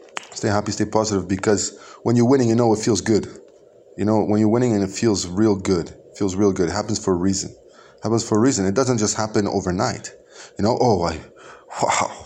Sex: male